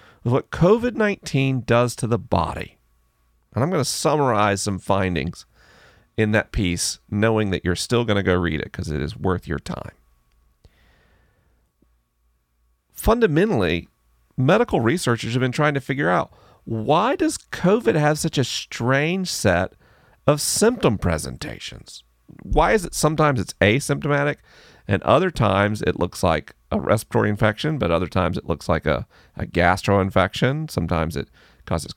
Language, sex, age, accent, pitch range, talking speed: English, male, 40-59, American, 85-140 Hz, 150 wpm